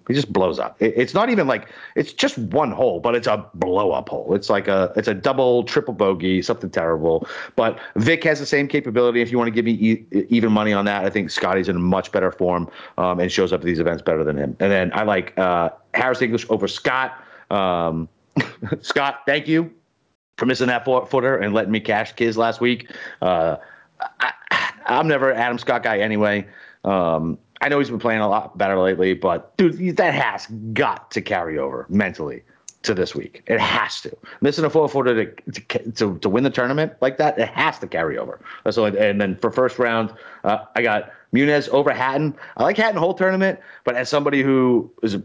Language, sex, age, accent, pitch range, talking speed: English, male, 30-49, American, 100-135 Hz, 210 wpm